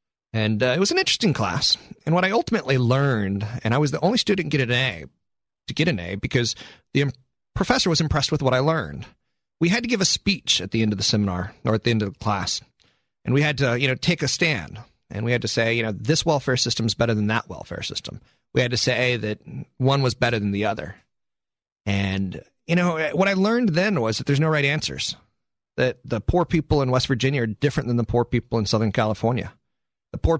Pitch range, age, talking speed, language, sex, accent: 115-160 Hz, 30-49, 235 wpm, English, male, American